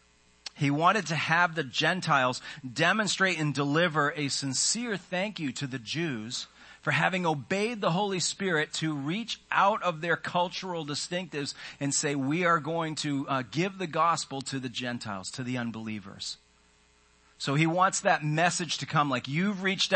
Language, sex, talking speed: English, male, 165 wpm